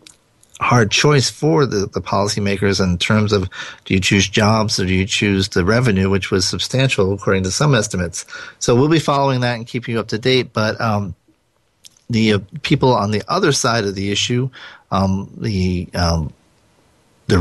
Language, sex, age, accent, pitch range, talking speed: English, male, 40-59, American, 100-125 Hz, 180 wpm